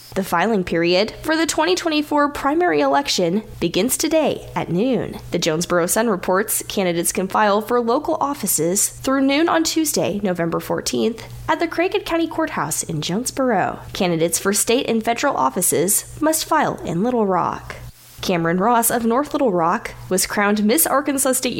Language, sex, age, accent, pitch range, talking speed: English, female, 10-29, American, 175-295 Hz, 160 wpm